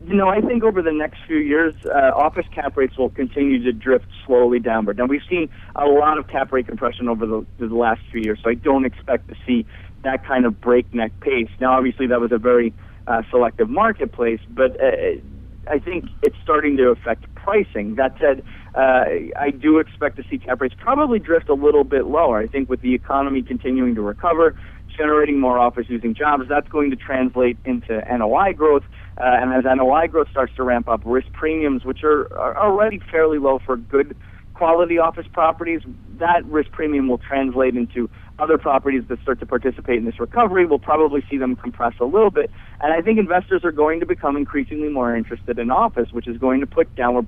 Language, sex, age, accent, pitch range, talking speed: English, male, 50-69, American, 120-155 Hz, 205 wpm